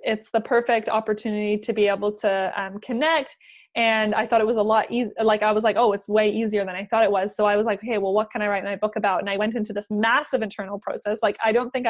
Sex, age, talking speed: female, 20-39, 285 wpm